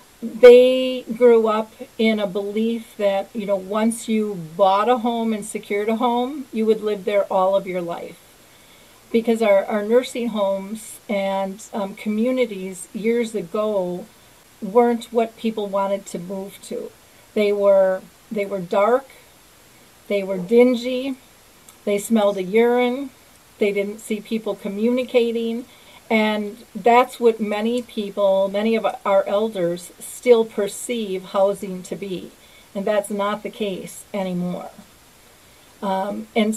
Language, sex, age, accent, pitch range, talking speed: English, female, 40-59, American, 200-230 Hz, 135 wpm